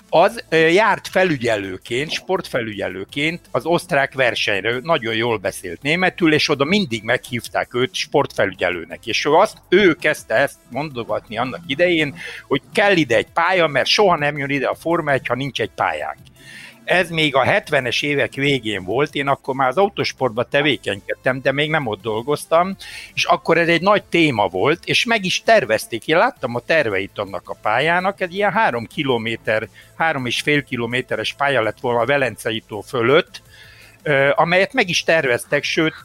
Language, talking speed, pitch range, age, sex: Hungarian, 160 wpm, 125-170 Hz, 60-79, male